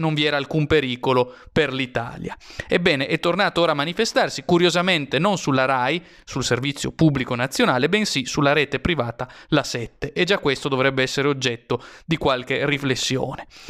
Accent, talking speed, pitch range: native, 160 wpm, 130-160 Hz